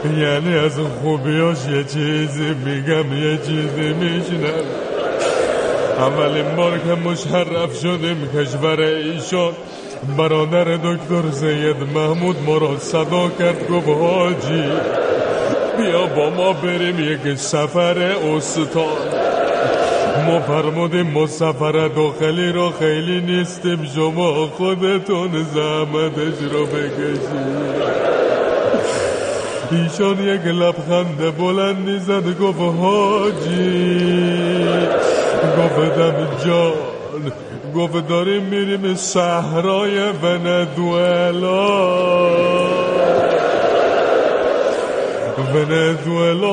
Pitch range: 155-195 Hz